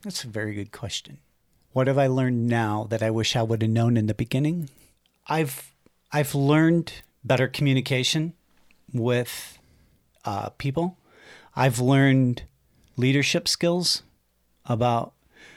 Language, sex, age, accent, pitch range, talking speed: English, male, 50-69, American, 110-140 Hz, 125 wpm